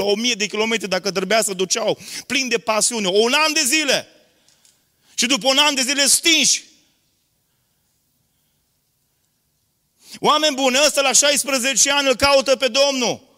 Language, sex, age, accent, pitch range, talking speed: Romanian, male, 30-49, native, 245-280 Hz, 145 wpm